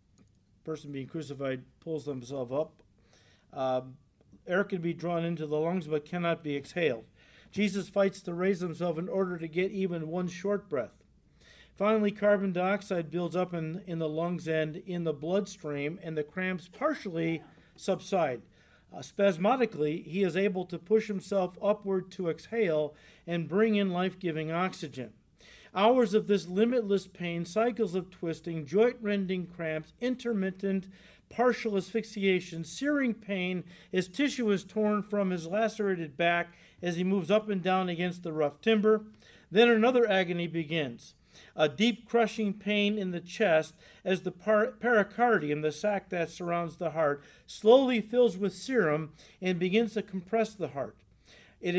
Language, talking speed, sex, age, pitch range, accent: English, 150 wpm, male, 50-69, 165-205 Hz, American